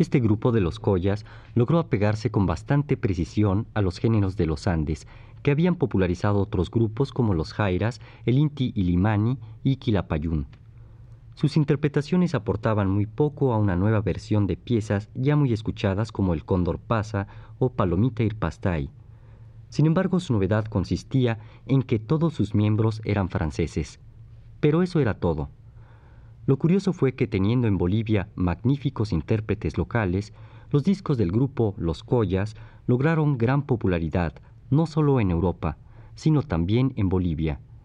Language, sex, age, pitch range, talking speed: Spanish, male, 40-59, 100-125 Hz, 145 wpm